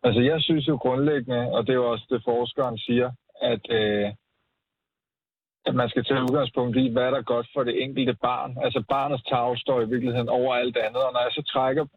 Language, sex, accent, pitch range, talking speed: Danish, male, native, 120-145 Hz, 220 wpm